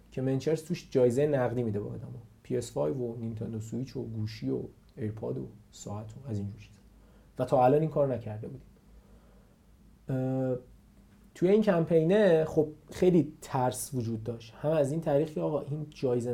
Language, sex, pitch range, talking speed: Persian, male, 115-155 Hz, 165 wpm